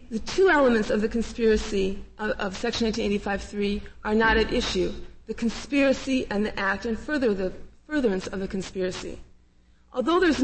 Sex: female